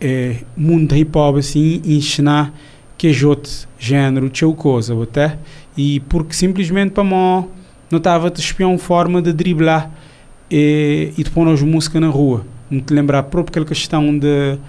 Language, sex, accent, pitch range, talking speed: Portuguese, male, Brazilian, 135-155 Hz, 150 wpm